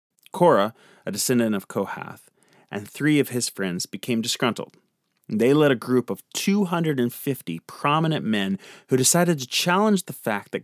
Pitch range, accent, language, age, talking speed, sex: 110-150 Hz, American, English, 30-49, 150 wpm, male